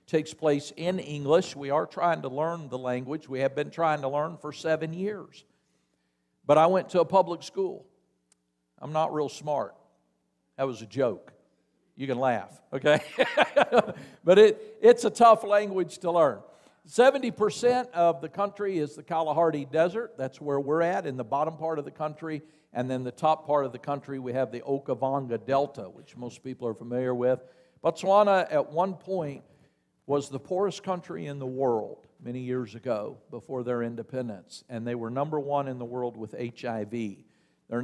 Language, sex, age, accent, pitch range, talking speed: English, male, 50-69, American, 125-170 Hz, 180 wpm